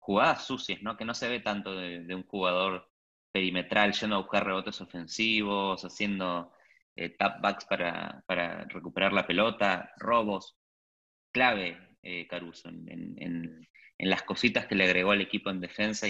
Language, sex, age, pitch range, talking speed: Spanish, male, 20-39, 90-105 Hz, 150 wpm